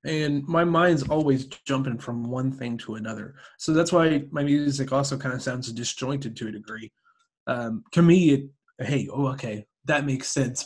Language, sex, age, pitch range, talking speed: English, male, 20-39, 130-160 Hz, 185 wpm